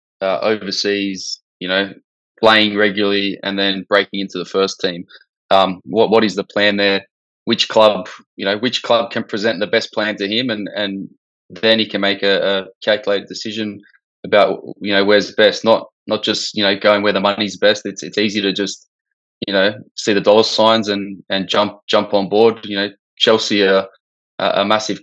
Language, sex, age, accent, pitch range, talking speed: English, male, 20-39, Australian, 100-105 Hz, 195 wpm